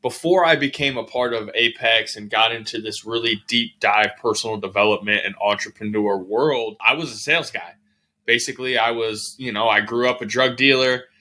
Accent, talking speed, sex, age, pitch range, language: American, 185 wpm, male, 20-39, 110-130 Hz, English